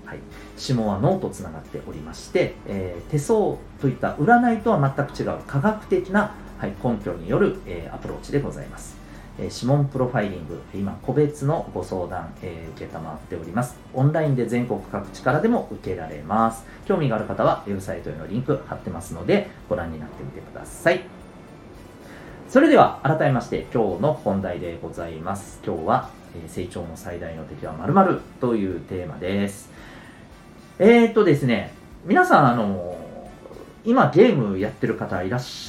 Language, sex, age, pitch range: Japanese, male, 40-59, 90-135 Hz